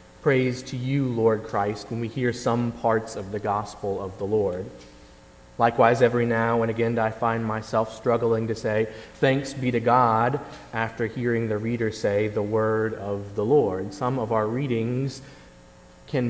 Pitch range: 115-130 Hz